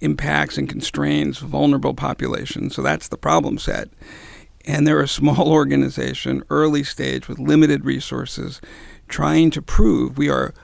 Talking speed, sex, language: 140 wpm, male, English